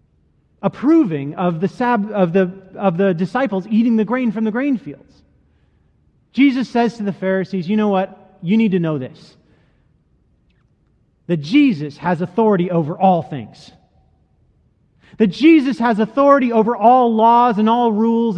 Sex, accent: male, American